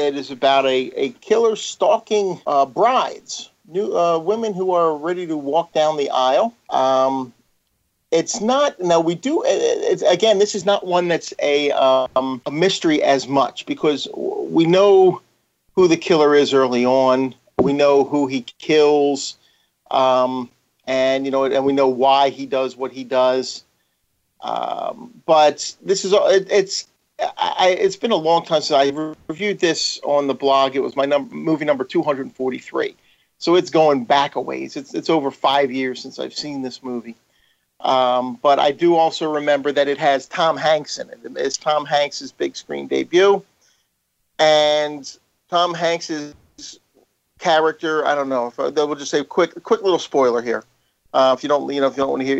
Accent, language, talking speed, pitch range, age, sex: American, English, 175 wpm, 135-175 Hz, 50-69, male